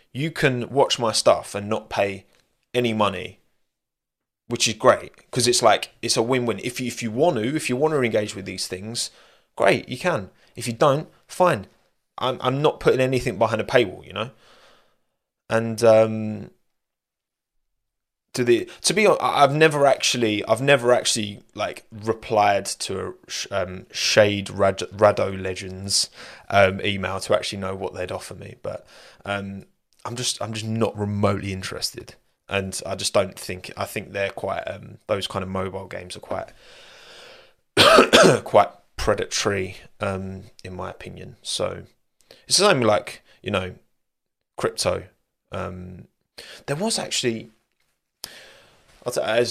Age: 20-39